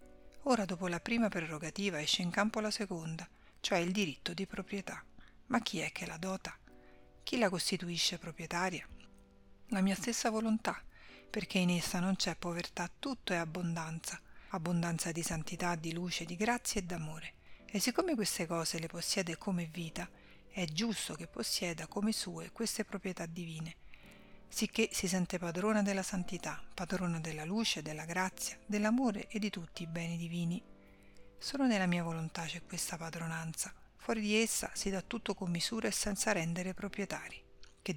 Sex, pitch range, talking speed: female, 170-205 Hz, 160 wpm